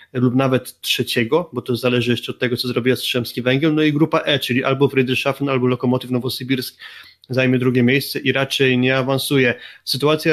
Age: 20-39